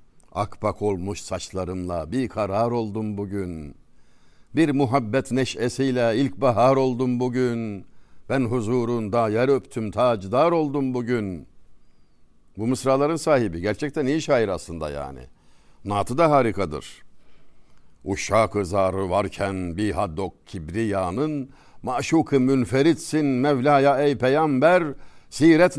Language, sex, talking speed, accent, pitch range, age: Turkish, male, 100 wpm, native, 95-135 Hz, 60-79